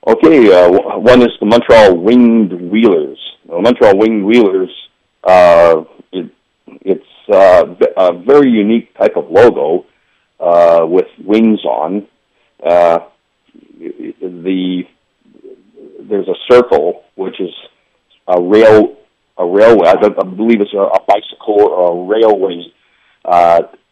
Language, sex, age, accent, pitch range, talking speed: English, male, 40-59, American, 90-120 Hz, 115 wpm